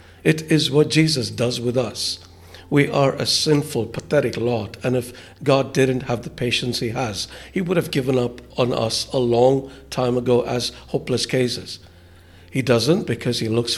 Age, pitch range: 60-79, 110-130 Hz